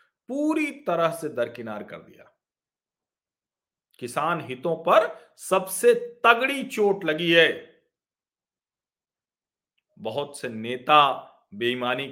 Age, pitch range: 50-69, 145-230 Hz